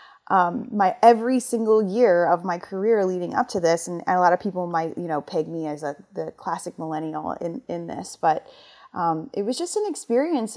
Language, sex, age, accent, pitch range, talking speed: English, female, 30-49, American, 165-200 Hz, 205 wpm